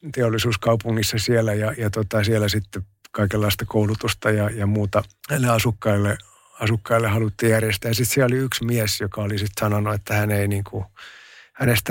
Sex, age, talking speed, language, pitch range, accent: male, 50-69, 155 wpm, Finnish, 100-115 Hz, native